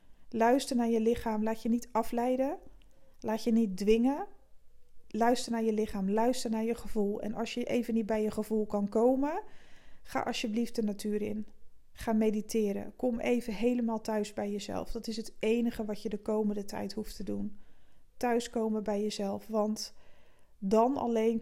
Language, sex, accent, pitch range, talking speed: Dutch, female, Dutch, 210-235 Hz, 170 wpm